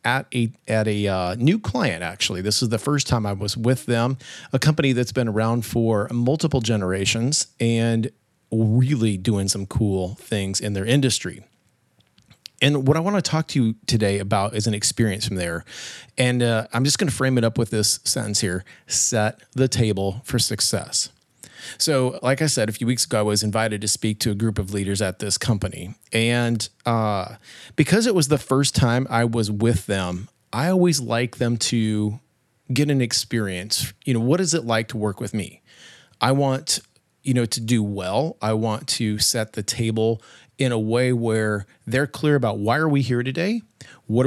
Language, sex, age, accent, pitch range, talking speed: English, male, 30-49, American, 105-130 Hz, 195 wpm